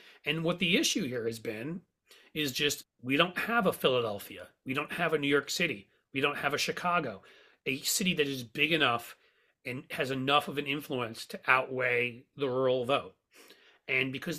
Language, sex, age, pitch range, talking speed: English, male, 30-49, 135-170 Hz, 190 wpm